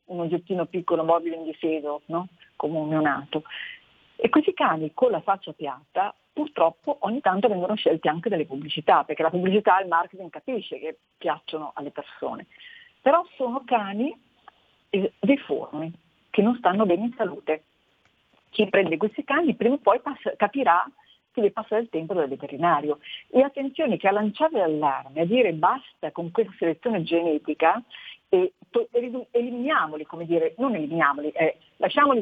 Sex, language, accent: female, Italian, native